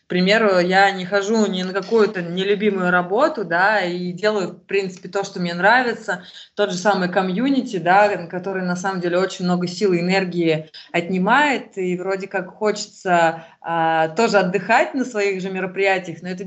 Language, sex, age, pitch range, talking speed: Russian, female, 20-39, 180-215 Hz, 170 wpm